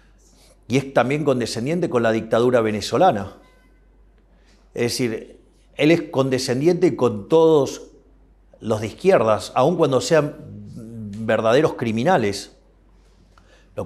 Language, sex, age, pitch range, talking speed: Spanish, male, 40-59, 110-150 Hz, 105 wpm